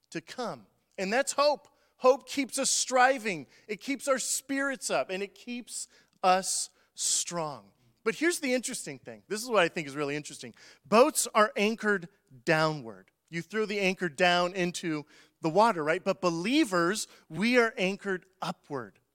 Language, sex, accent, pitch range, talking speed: English, male, American, 165-235 Hz, 155 wpm